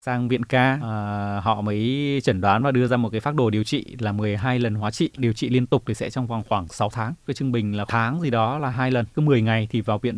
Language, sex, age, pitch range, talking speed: Vietnamese, male, 20-39, 115-145 Hz, 295 wpm